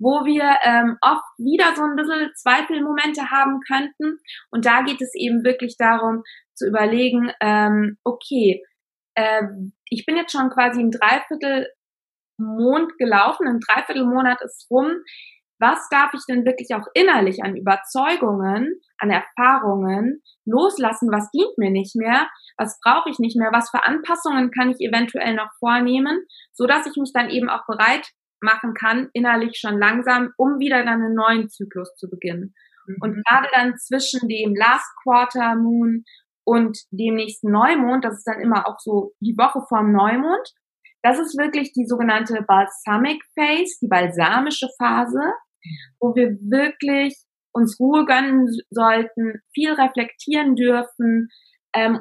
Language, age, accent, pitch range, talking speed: German, 20-39, German, 220-270 Hz, 150 wpm